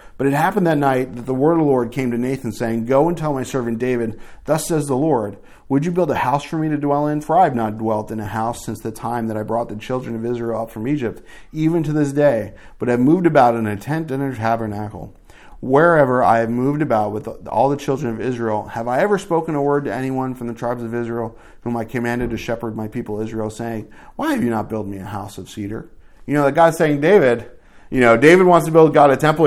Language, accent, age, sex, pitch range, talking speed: English, American, 40-59, male, 110-140 Hz, 265 wpm